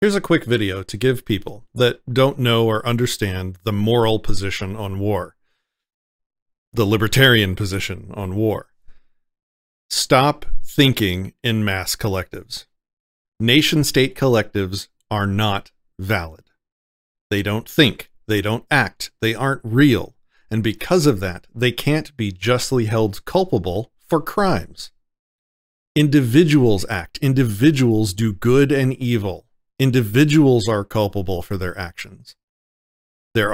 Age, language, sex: 40-59, English, male